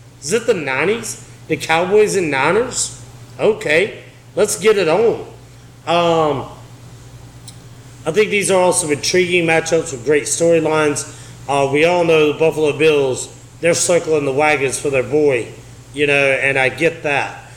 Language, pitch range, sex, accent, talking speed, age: English, 125-165 Hz, male, American, 150 wpm, 30-49